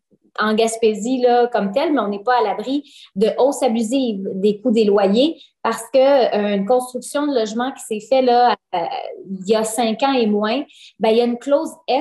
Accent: Canadian